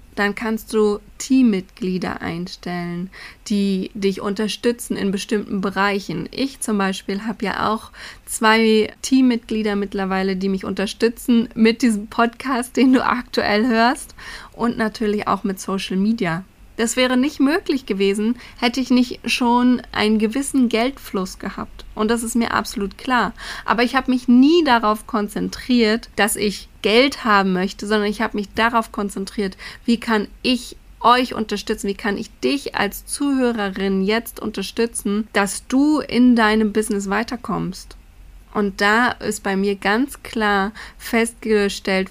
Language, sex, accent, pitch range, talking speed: German, female, German, 200-235 Hz, 145 wpm